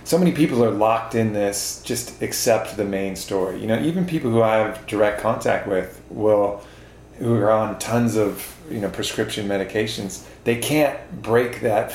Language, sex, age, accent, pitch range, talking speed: English, male, 30-49, American, 95-110 Hz, 180 wpm